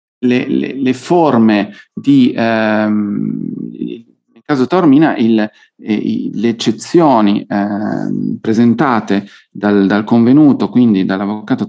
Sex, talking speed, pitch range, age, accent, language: male, 105 wpm, 110-130 Hz, 40-59, native, Italian